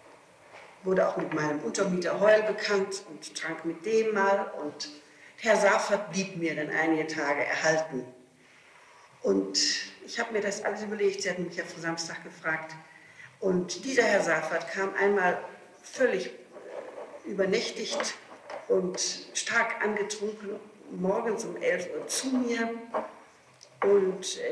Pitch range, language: 180-215 Hz, German